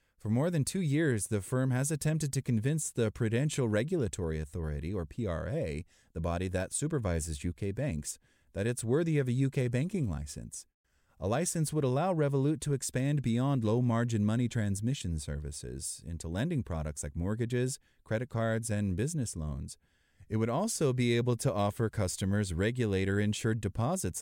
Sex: male